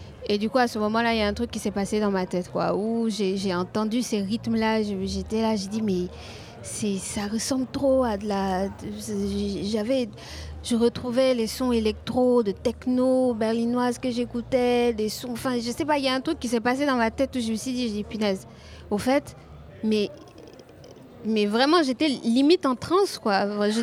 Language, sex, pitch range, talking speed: French, female, 210-260 Hz, 210 wpm